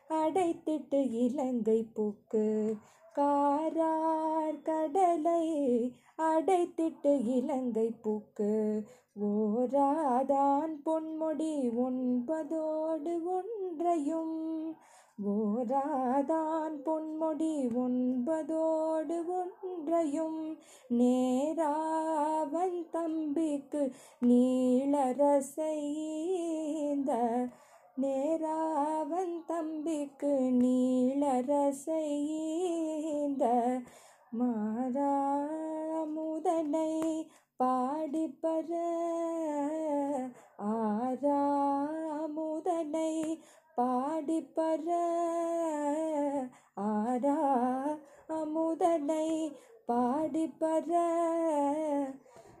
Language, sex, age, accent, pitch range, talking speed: Tamil, female, 20-39, native, 260-320 Hz, 30 wpm